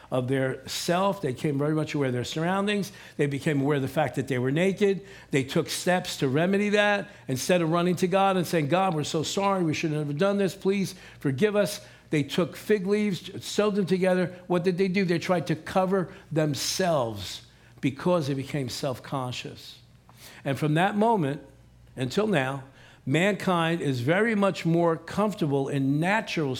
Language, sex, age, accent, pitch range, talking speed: English, male, 60-79, American, 135-180 Hz, 180 wpm